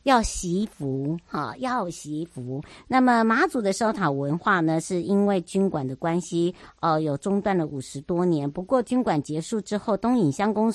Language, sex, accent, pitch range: Chinese, male, American, 155-210 Hz